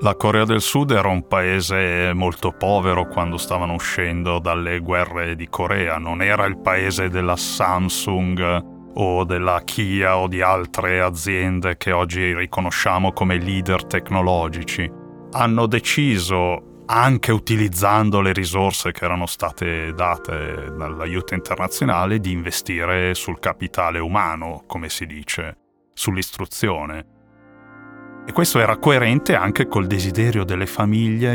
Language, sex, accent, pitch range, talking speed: Italian, male, native, 90-105 Hz, 125 wpm